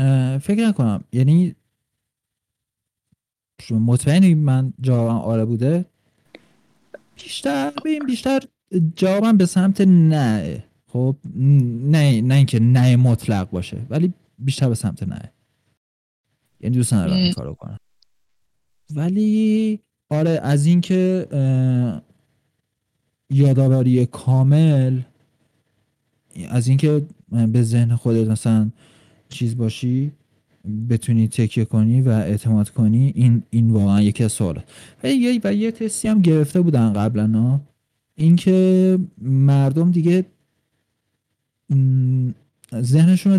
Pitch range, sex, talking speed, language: 115-160 Hz, male, 95 wpm, Persian